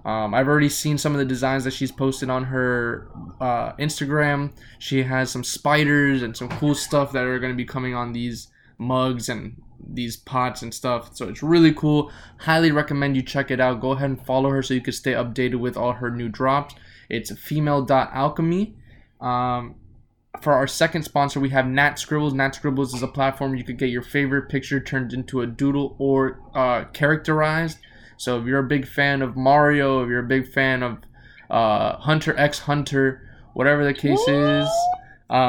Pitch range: 125-145 Hz